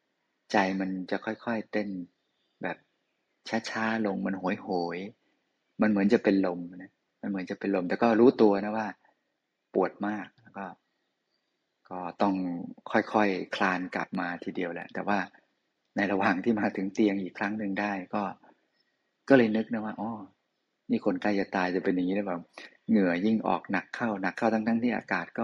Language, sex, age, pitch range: Thai, male, 20-39, 95-110 Hz